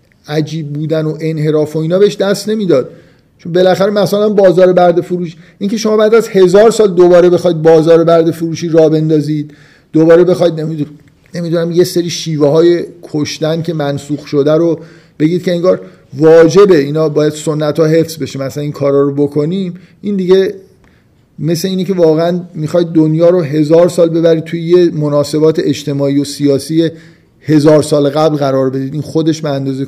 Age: 50-69